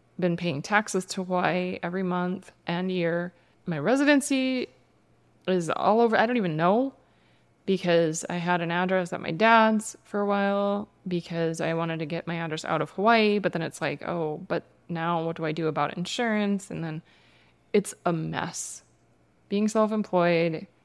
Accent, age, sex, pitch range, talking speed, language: American, 20-39, female, 170-210 Hz, 175 wpm, English